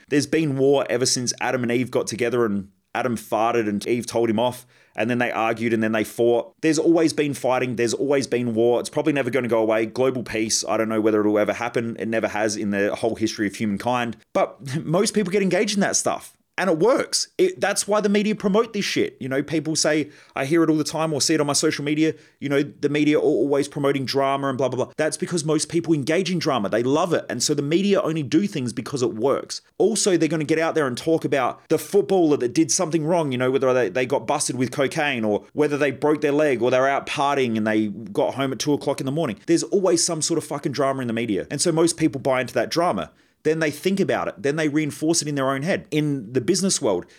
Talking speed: 260 wpm